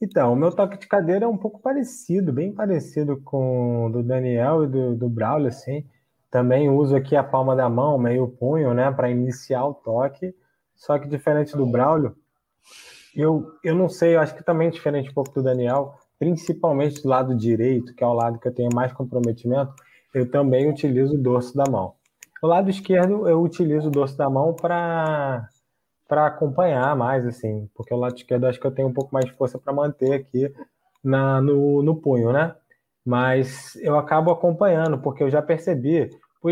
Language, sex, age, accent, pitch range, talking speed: Portuguese, male, 20-39, Brazilian, 130-155 Hz, 195 wpm